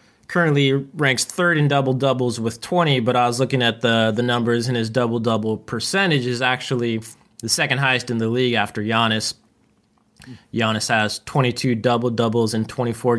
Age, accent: 20-39, American